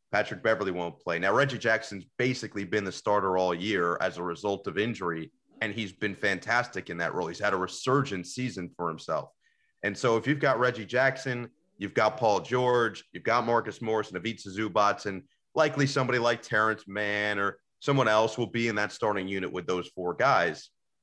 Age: 30-49